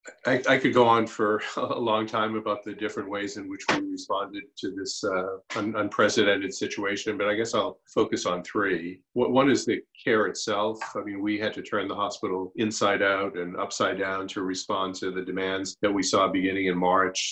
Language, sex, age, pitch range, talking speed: English, male, 40-59, 95-110 Hz, 200 wpm